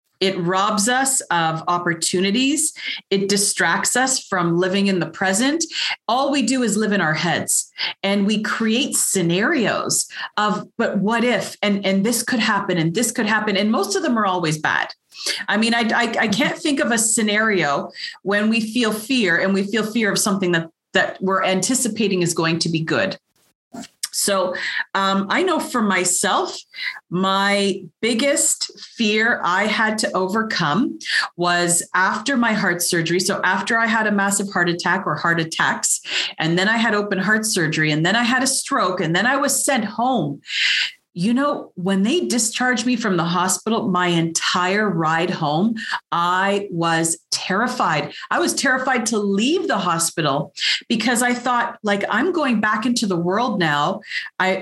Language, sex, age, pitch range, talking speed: English, female, 30-49, 180-235 Hz, 170 wpm